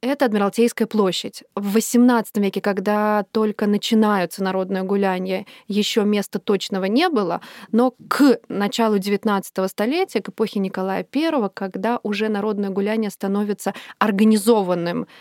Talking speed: 120 wpm